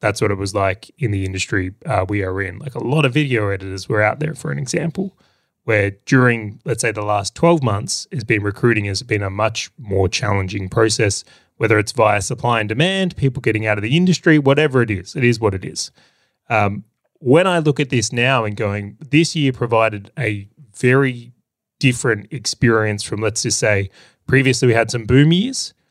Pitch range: 105-145 Hz